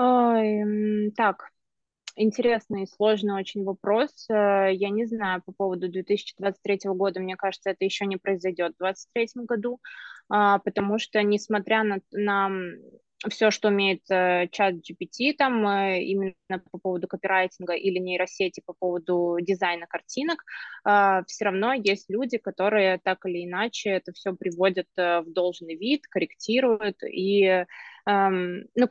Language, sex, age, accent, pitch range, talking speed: Russian, female, 20-39, native, 185-215 Hz, 125 wpm